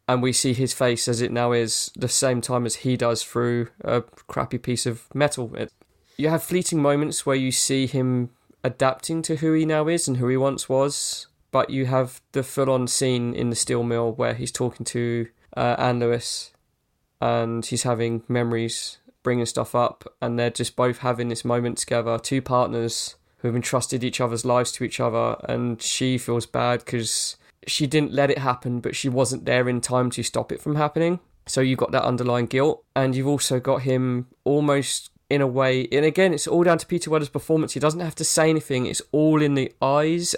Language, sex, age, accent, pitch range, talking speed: English, male, 20-39, British, 120-150 Hz, 205 wpm